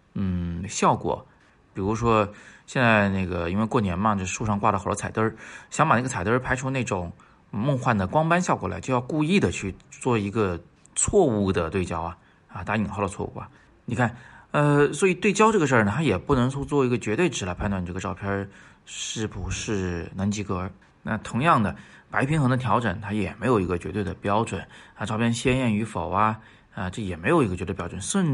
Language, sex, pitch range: Chinese, male, 100-135 Hz